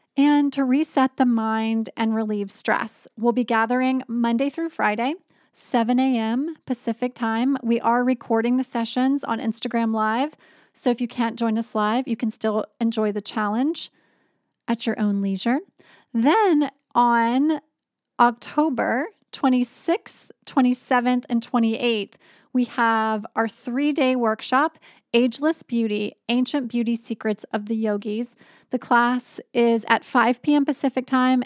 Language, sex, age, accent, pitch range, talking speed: English, female, 20-39, American, 225-255 Hz, 135 wpm